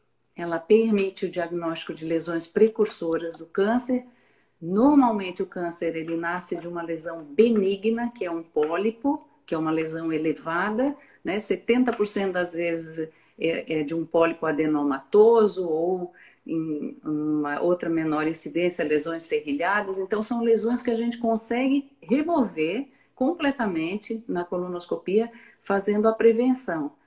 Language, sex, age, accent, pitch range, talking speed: Portuguese, female, 50-69, Brazilian, 175-235 Hz, 125 wpm